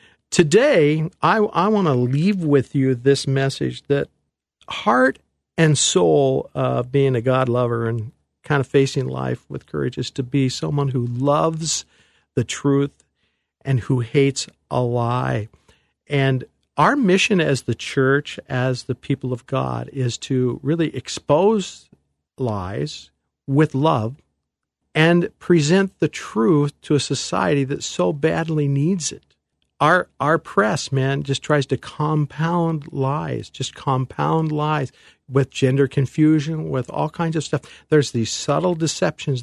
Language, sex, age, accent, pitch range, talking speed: English, male, 50-69, American, 125-160 Hz, 145 wpm